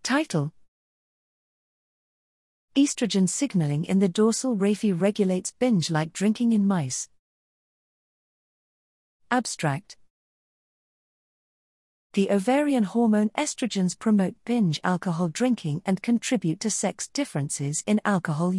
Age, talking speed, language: 50-69, 90 wpm, English